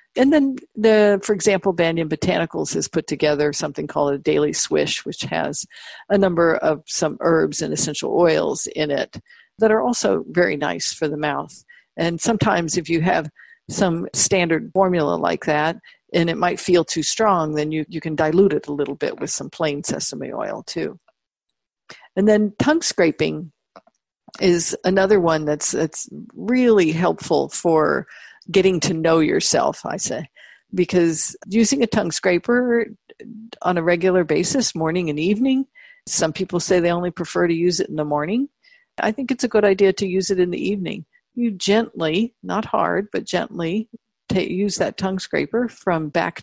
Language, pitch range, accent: English, 170-230 Hz, American